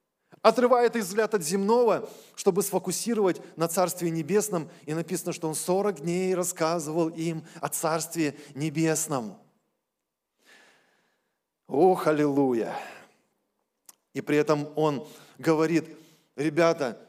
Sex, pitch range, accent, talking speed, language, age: male, 165-225 Hz, native, 100 wpm, Russian, 20-39